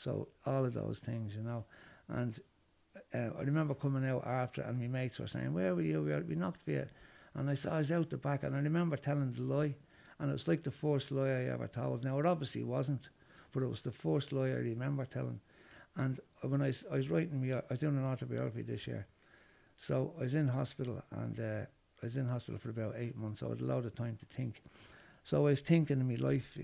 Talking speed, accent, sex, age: 250 wpm, Irish, male, 60-79